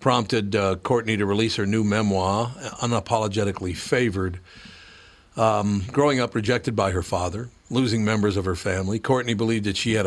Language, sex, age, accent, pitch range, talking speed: English, male, 60-79, American, 100-120 Hz, 160 wpm